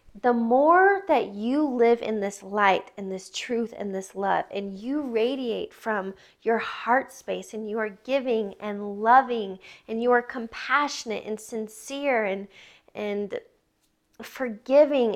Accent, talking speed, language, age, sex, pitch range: American, 145 wpm, English, 10-29, female, 215-270 Hz